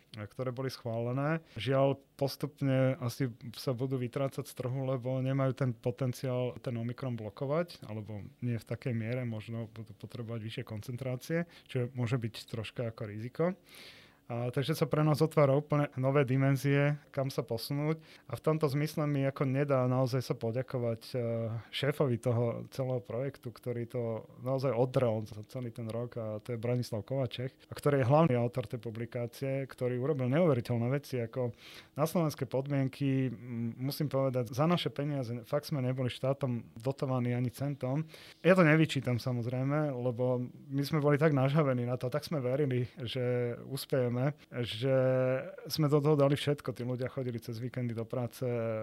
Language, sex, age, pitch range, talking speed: Slovak, male, 30-49, 120-145 Hz, 160 wpm